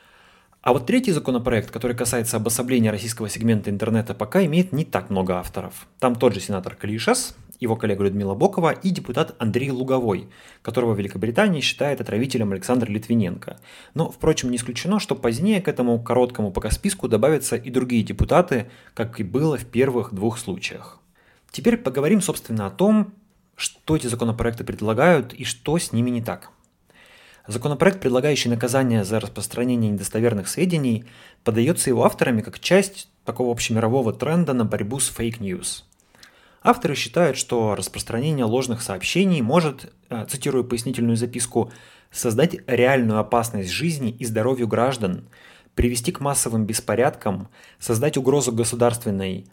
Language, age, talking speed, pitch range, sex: Russian, 30-49, 140 wpm, 110-140 Hz, male